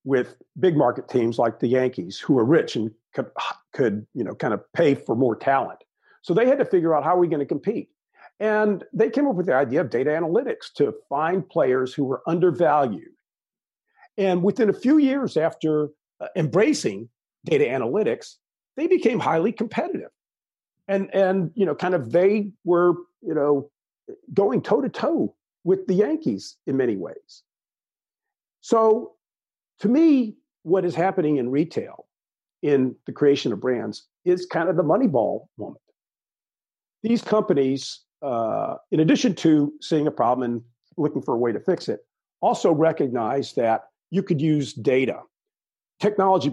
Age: 50-69